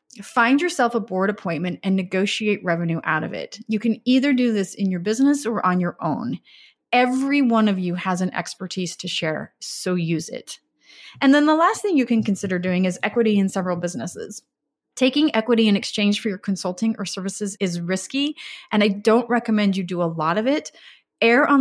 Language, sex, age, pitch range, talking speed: English, female, 30-49, 185-235 Hz, 200 wpm